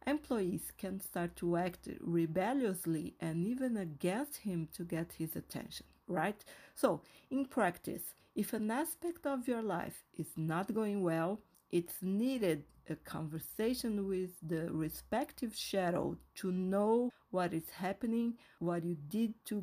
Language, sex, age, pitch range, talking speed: English, female, 40-59, 175-220 Hz, 140 wpm